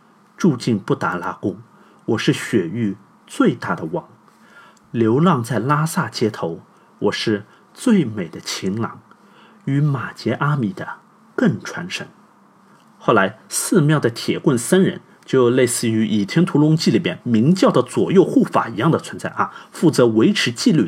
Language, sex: Chinese, male